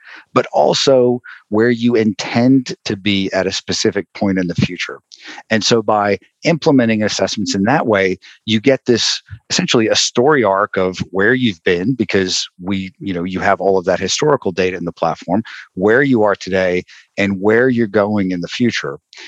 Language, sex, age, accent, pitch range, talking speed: English, male, 50-69, American, 95-120 Hz, 180 wpm